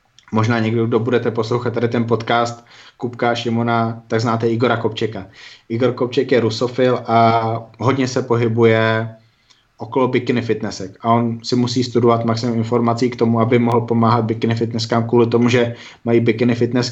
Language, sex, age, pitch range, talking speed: Slovak, male, 20-39, 115-120 Hz, 160 wpm